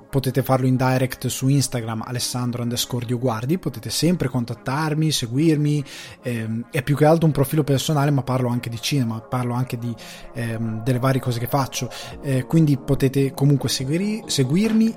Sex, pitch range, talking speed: male, 125-145 Hz, 140 wpm